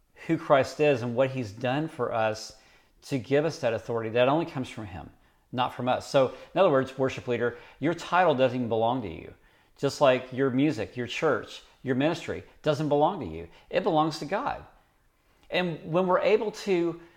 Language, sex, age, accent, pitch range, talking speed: English, male, 40-59, American, 125-175 Hz, 195 wpm